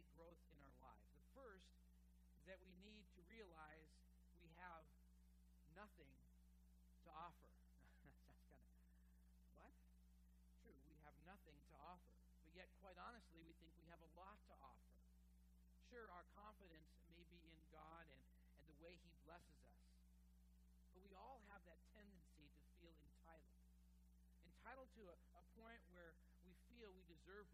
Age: 50-69